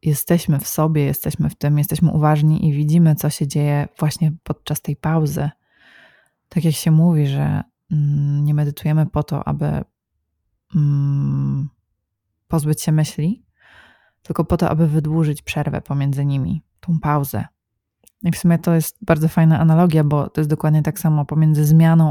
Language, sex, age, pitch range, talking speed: Polish, female, 20-39, 150-170 Hz, 150 wpm